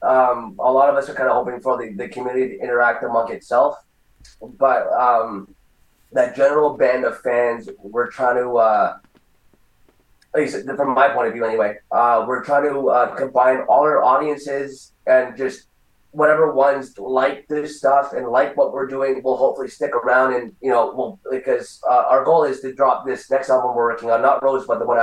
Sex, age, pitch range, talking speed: male, 20-39, 120-140 Hz, 200 wpm